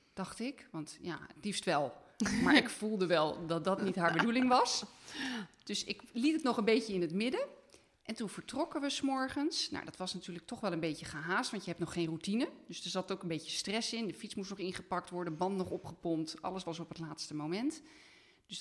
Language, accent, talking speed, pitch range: Dutch, Dutch, 230 wpm, 170-225 Hz